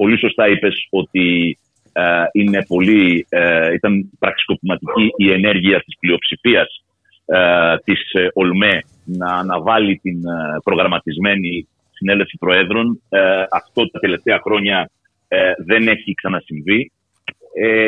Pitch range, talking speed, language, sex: 95-125 Hz, 120 wpm, Greek, male